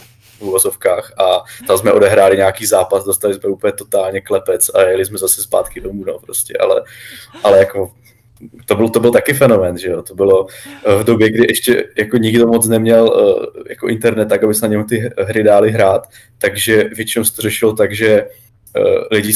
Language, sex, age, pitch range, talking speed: Czech, male, 20-39, 105-140 Hz, 185 wpm